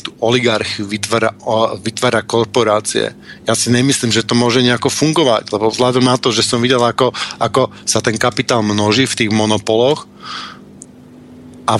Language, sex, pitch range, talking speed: Slovak, male, 115-135 Hz, 155 wpm